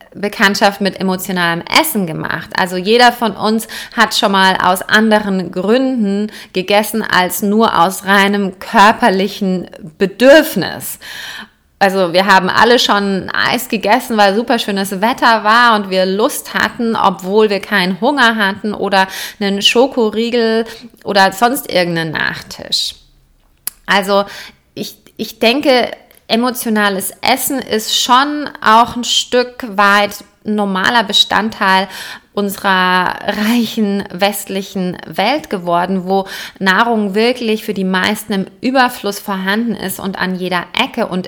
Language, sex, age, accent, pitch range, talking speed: German, female, 30-49, German, 190-225 Hz, 120 wpm